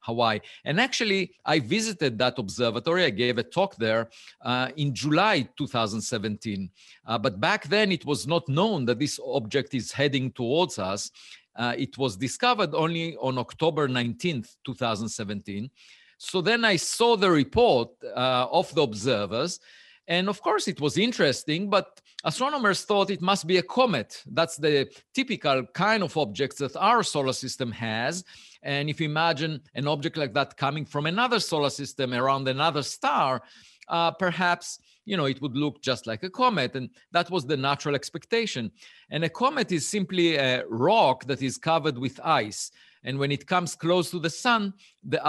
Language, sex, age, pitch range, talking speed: English, male, 50-69, 130-180 Hz, 170 wpm